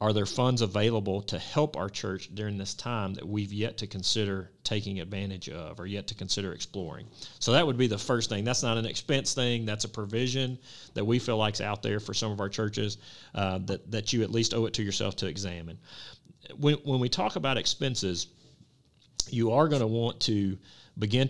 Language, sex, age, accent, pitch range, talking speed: English, male, 40-59, American, 100-125 Hz, 210 wpm